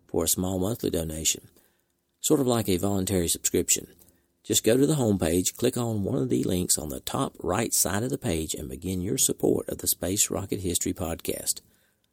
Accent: American